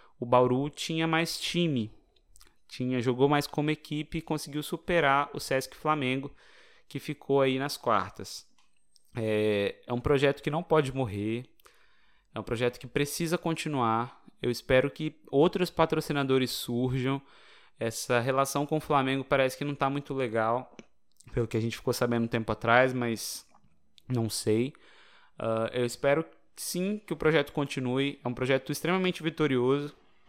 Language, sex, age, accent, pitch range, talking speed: Portuguese, male, 20-39, Brazilian, 125-155 Hz, 150 wpm